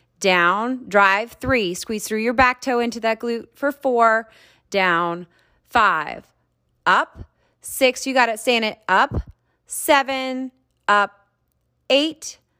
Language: English